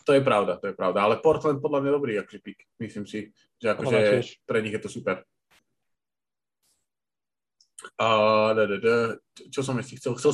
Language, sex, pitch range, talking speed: Slovak, male, 105-130 Hz, 155 wpm